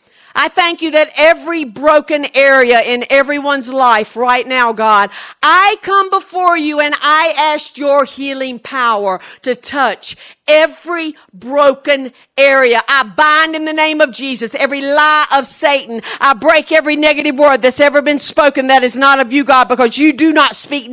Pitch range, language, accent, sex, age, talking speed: 240-290 Hz, English, American, female, 50-69, 170 wpm